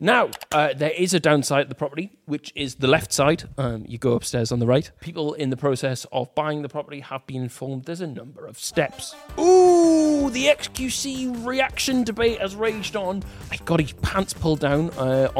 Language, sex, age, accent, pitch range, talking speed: English, male, 30-49, British, 130-190 Hz, 205 wpm